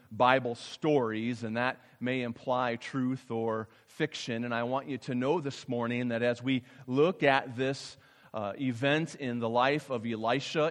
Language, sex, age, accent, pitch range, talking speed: English, male, 40-59, American, 110-140 Hz, 170 wpm